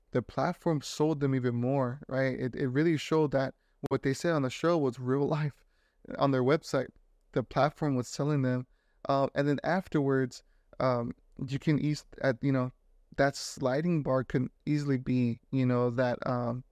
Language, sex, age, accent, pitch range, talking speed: English, male, 20-39, American, 130-150 Hz, 180 wpm